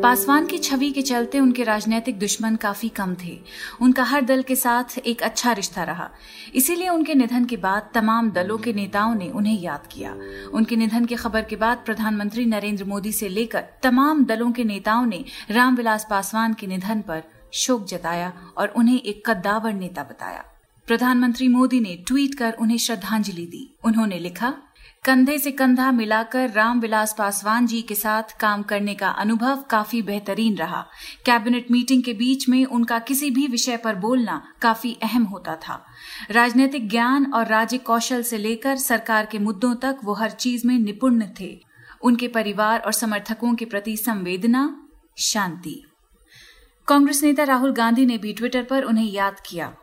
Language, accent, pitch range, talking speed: Hindi, native, 210-250 Hz, 165 wpm